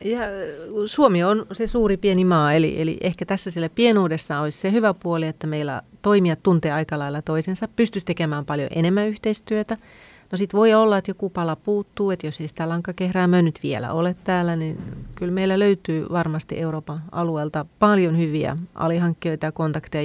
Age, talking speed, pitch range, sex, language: 30-49, 170 wpm, 150-190 Hz, female, Finnish